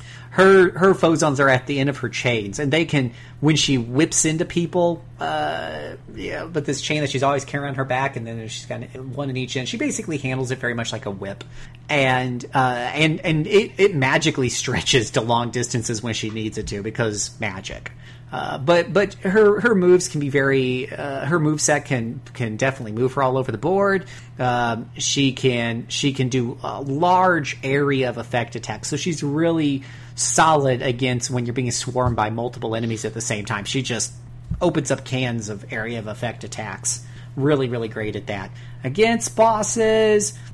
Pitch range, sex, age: 120-155 Hz, male, 40-59